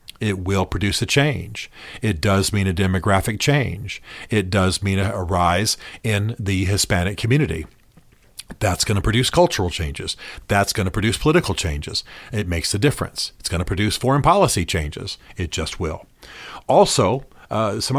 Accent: American